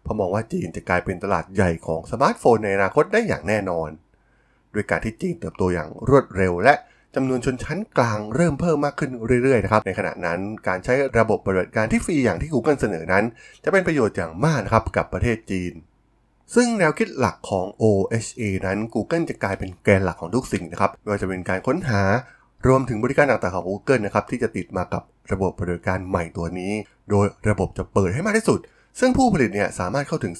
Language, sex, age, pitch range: Thai, male, 20-39, 90-120 Hz